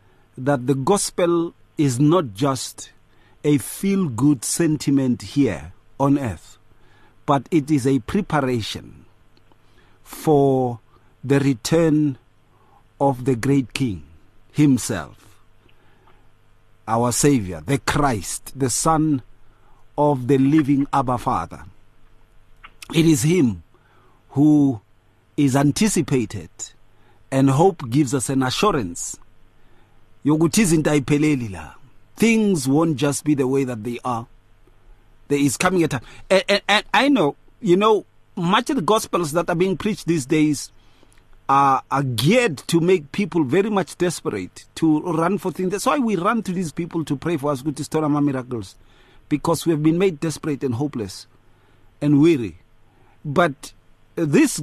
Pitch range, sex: 110-160 Hz, male